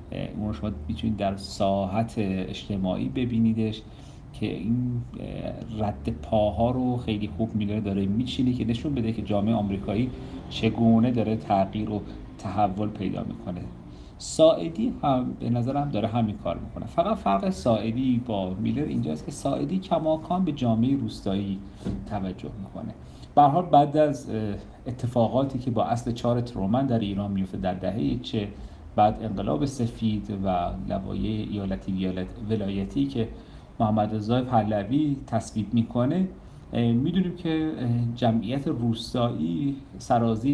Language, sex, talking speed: Persian, male, 125 wpm